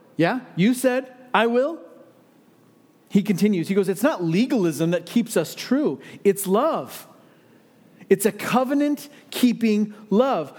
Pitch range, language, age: 185-245 Hz, English, 40-59